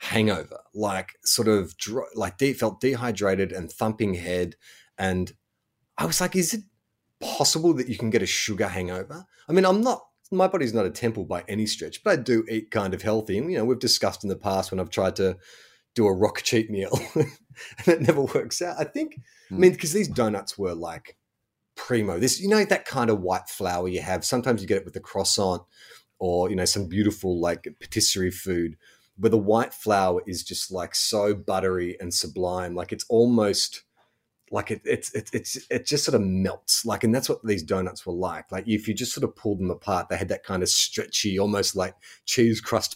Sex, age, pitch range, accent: male, 30-49, 95-120 Hz, Australian